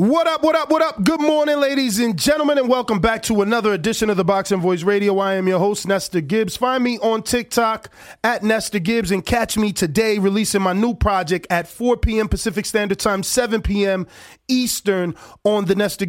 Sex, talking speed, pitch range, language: male, 205 wpm, 185-230 Hz, English